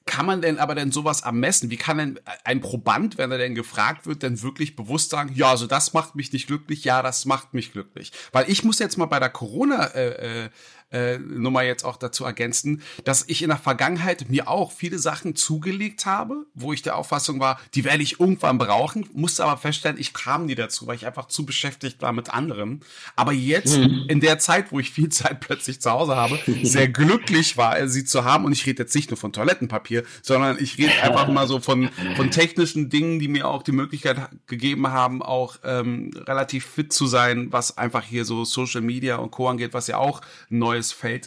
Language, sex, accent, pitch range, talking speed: German, male, German, 125-155 Hz, 215 wpm